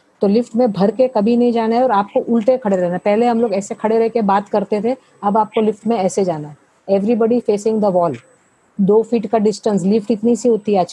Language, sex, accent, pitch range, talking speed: English, female, Indian, 195-225 Hz, 180 wpm